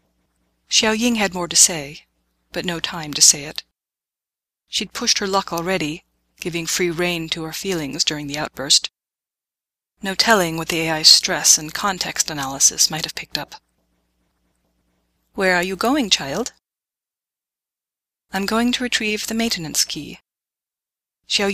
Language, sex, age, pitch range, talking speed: English, female, 30-49, 145-190 Hz, 145 wpm